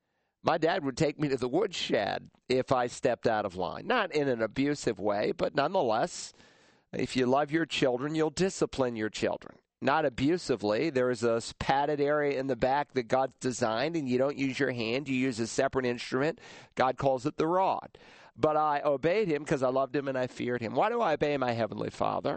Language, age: English, 50-69